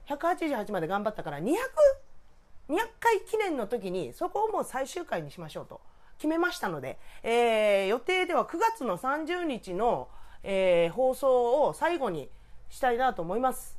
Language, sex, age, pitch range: Japanese, female, 40-59, 210-335 Hz